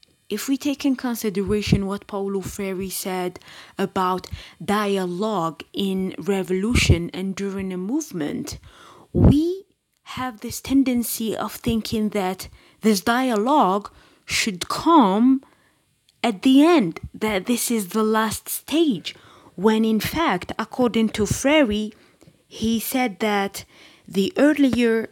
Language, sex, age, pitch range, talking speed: English, female, 20-39, 195-250 Hz, 115 wpm